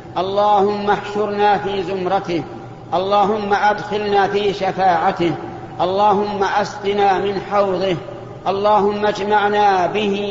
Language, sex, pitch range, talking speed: Arabic, male, 170-210 Hz, 85 wpm